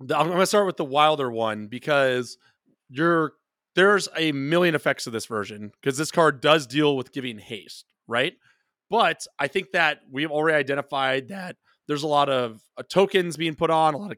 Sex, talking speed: male, 195 wpm